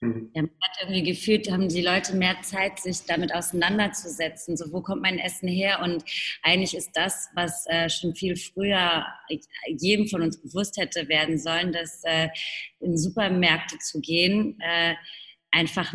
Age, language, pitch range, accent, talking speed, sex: 30-49, English, 160-185 Hz, German, 160 wpm, female